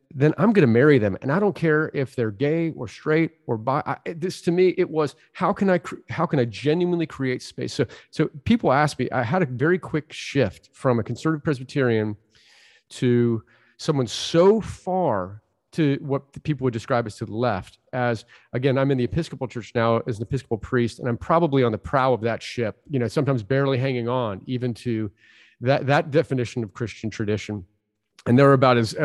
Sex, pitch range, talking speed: male, 115-145 Hz, 210 wpm